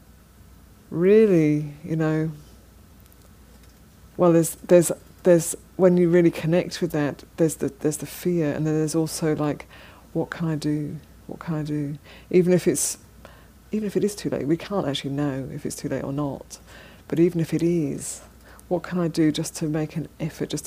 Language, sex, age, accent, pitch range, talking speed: English, female, 40-59, British, 145-170 Hz, 190 wpm